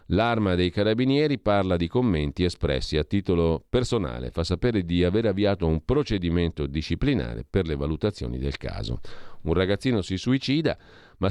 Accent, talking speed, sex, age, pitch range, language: native, 150 wpm, male, 40-59, 80-100 Hz, Italian